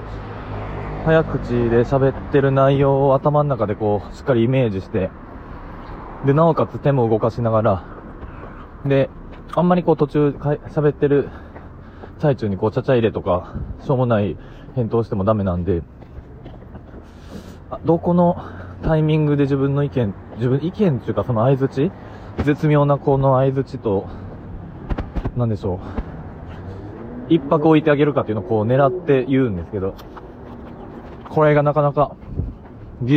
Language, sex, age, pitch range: Japanese, male, 20-39, 95-140 Hz